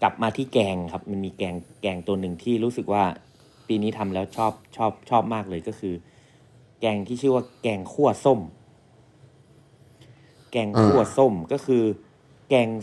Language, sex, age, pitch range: Thai, male, 30-49, 95-125 Hz